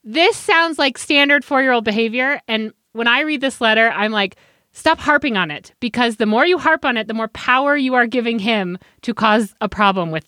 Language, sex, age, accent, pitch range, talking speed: English, female, 30-49, American, 215-285 Hz, 215 wpm